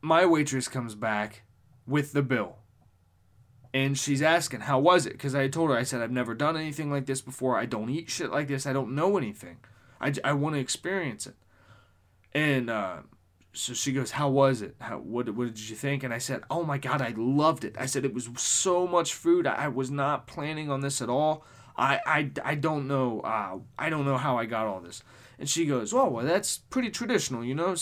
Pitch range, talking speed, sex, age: 120-155 Hz, 225 wpm, male, 20-39